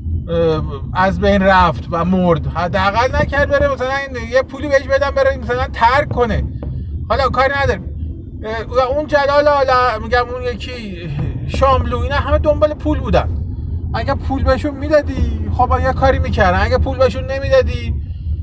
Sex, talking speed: male, 135 wpm